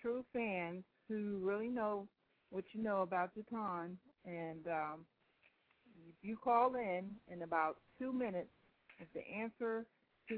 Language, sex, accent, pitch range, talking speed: English, female, American, 175-215 Hz, 140 wpm